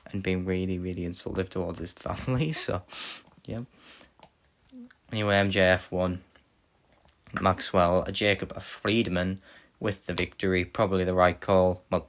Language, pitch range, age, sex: English, 90-100 Hz, 10-29, male